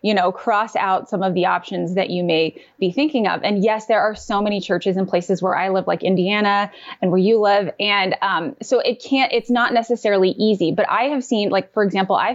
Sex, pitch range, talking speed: female, 190-230 Hz, 240 wpm